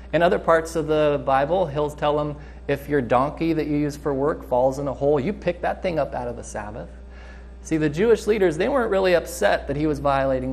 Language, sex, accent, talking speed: English, male, American, 240 wpm